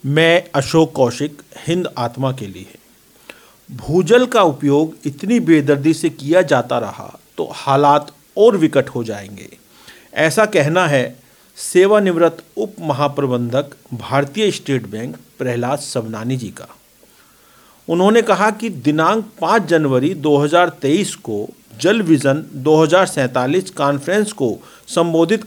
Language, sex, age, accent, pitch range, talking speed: Hindi, male, 50-69, native, 140-185 Hz, 115 wpm